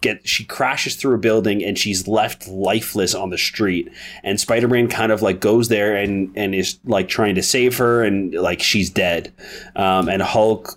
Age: 30-49